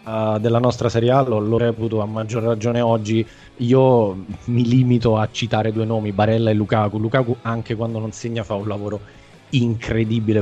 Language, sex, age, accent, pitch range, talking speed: Italian, male, 20-39, native, 110-125 Hz, 165 wpm